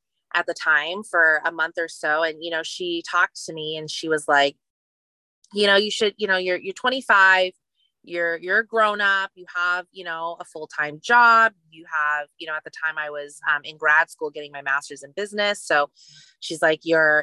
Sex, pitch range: female, 155-200 Hz